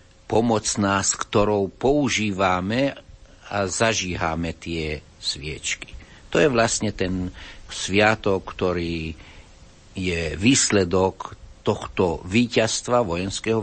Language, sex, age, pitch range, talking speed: Slovak, male, 60-79, 90-110 Hz, 85 wpm